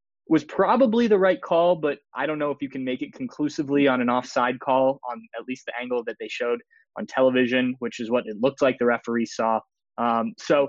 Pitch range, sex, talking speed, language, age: 115-140 Hz, male, 225 wpm, English, 20-39